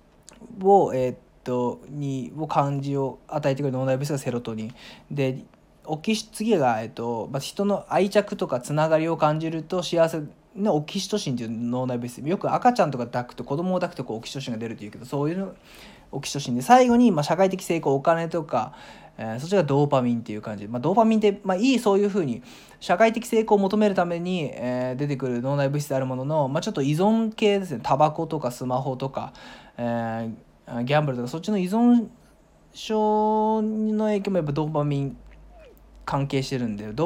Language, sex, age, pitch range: Japanese, male, 20-39, 125-190 Hz